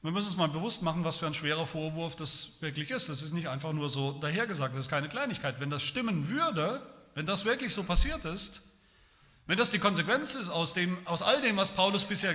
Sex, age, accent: male, 40-59, German